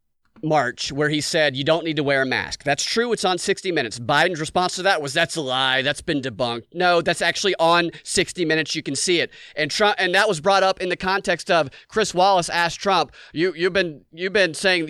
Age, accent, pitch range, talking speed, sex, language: 30-49, American, 160-205 Hz, 240 wpm, male, English